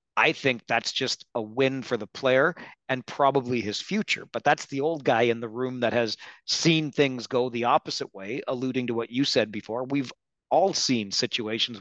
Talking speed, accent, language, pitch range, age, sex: 200 wpm, American, English, 115-140 Hz, 40-59, male